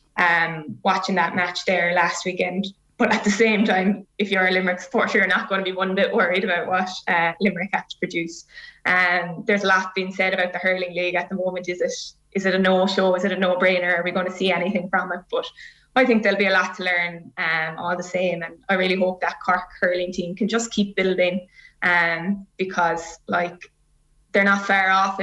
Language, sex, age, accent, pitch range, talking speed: English, female, 20-39, Irish, 175-190 Hz, 225 wpm